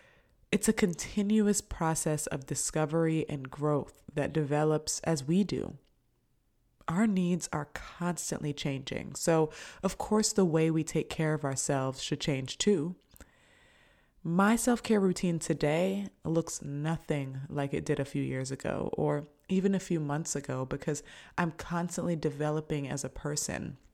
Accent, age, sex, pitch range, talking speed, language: American, 20-39, female, 145-175 Hz, 145 wpm, English